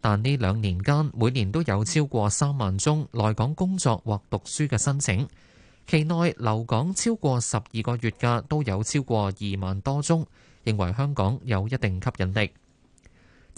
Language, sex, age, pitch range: Chinese, male, 20-39, 105-145 Hz